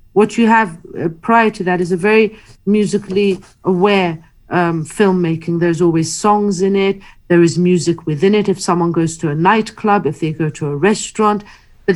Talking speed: 180 wpm